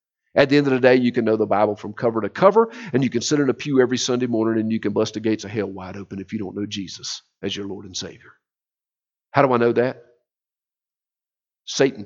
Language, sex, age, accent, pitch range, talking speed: English, male, 50-69, American, 100-130 Hz, 255 wpm